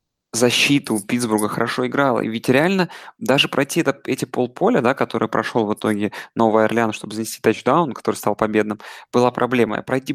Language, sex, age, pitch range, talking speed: Russian, male, 20-39, 110-130 Hz, 160 wpm